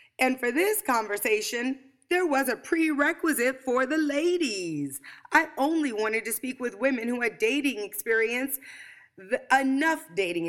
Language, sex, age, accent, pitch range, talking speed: English, female, 30-49, American, 200-275 Hz, 135 wpm